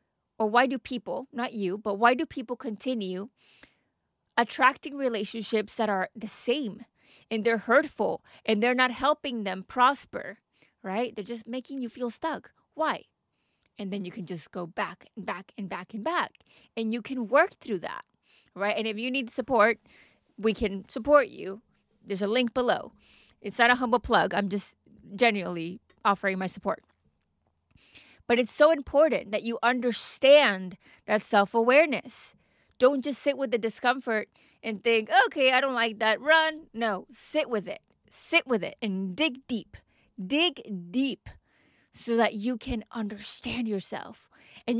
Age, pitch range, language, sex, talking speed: 20-39, 210-270 Hz, English, female, 160 wpm